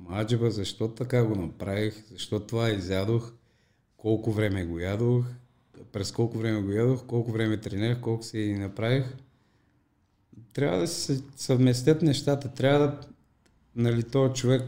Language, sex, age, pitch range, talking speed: Bulgarian, male, 50-69, 100-120 Hz, 135 wpm